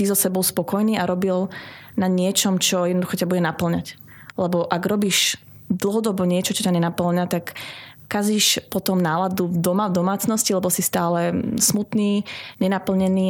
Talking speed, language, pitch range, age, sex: 145 wpm, Slovak, 180-210 Hz, 20-39, female